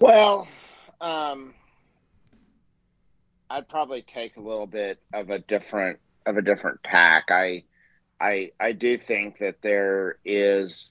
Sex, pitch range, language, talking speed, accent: male, 100-115 Hz, English, 125 wpm, American